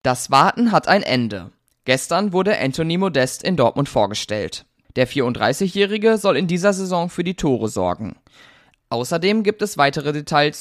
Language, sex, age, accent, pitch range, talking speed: German, male, 20-39, German, 125-180 Hz, 155 wpm